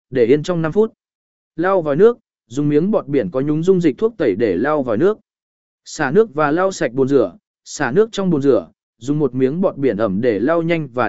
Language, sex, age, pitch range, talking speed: Vietnamese, male, 20-39, 145-205 Hz, 240 wpm